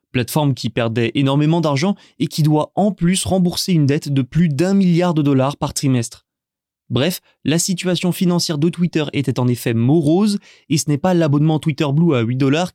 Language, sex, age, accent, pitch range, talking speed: French, male, 20-39, French, 135-175 Hz, 195 wpm